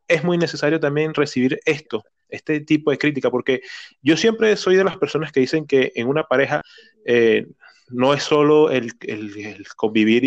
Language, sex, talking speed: Spanish, male, 180 wpm